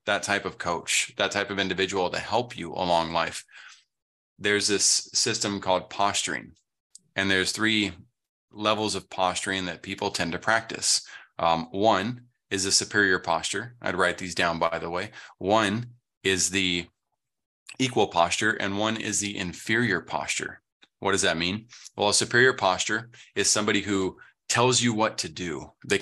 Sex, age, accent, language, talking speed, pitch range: male, 20-39, American, English, 160 wpm, 95-115 Hz